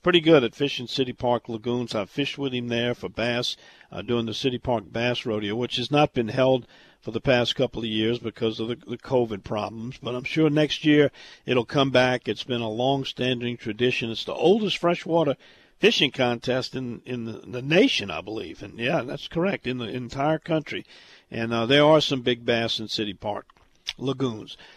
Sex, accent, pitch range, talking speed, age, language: male, American, 120-155 Hz, 200 wpm, 50-69, English